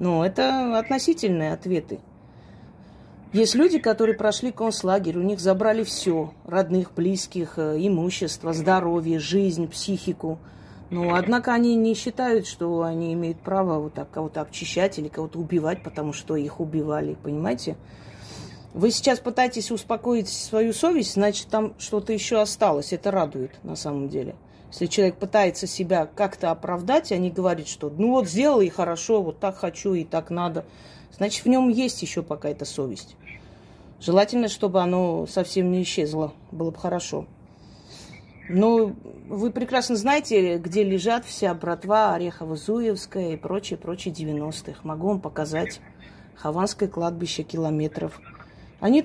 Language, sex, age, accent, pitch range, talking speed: Russian, female, 30-49, native, 165-215 Hz, 140 wpm